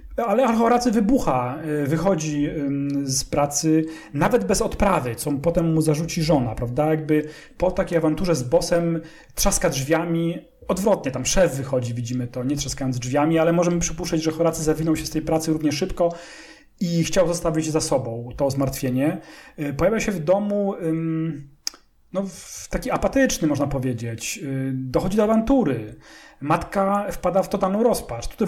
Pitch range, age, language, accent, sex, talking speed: 140-175 Hz, 40-59, English, Polish, male, 145 wpm